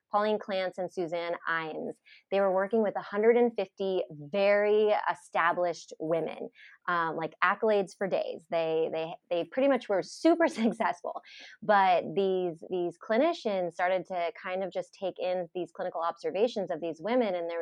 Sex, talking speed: female, 155 wpm